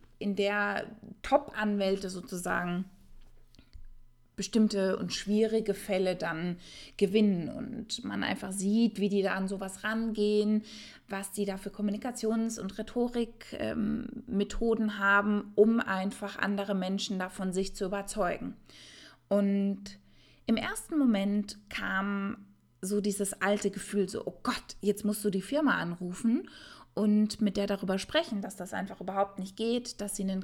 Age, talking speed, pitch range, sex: 20-39, 135 wpm, 195-230 Hz, female